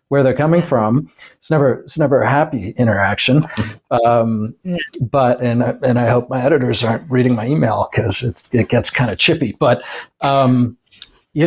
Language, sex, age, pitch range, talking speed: English, male, 40-59, 115-145 Hz, 165 wpm